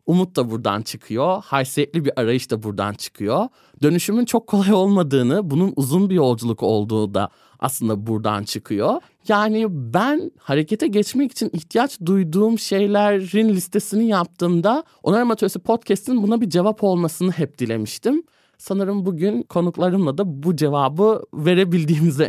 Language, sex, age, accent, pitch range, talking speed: Turkish, male, 30-49, native, 135-200 Hz, 130 wpm